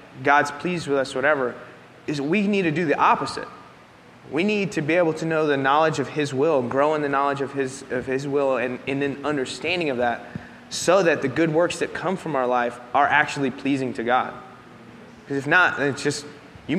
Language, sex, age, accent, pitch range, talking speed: English, male, 20-39, American, 125-150 Hz, 215 wpm